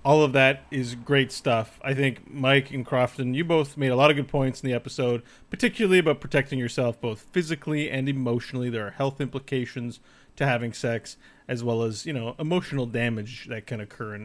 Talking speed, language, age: 200 wpm, English, 30-49